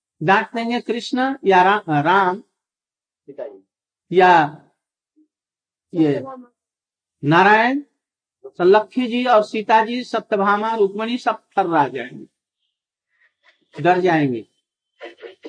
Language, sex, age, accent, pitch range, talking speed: Hindi, male, 60-79, native, 185-245 Hz, 65 wpm